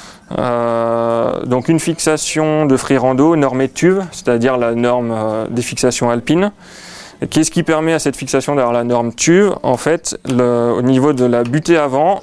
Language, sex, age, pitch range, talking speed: French, male, 20-39, 125-150 Hz, 175 wpm